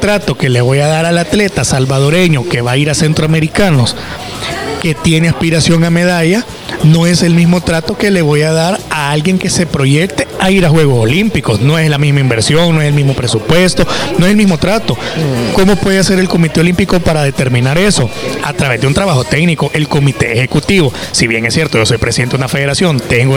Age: 30-49